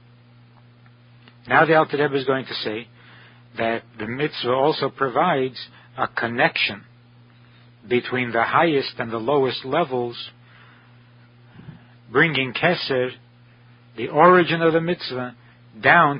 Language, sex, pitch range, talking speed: English, male, 120-130 Hz, 110 wpm